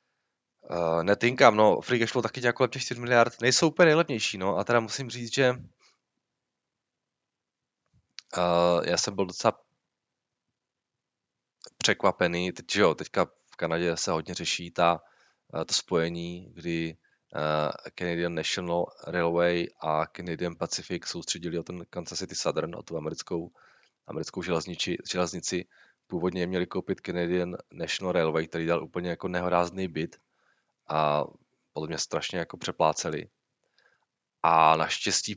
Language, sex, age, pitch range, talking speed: Czech, male, 20-39, 85-100 Hz, 130 wpm